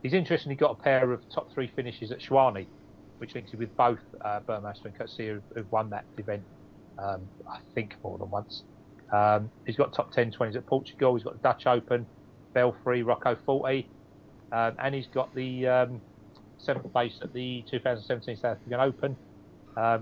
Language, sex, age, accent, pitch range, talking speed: English, male, 30-49, British, 105-130 Hz, 185 wpm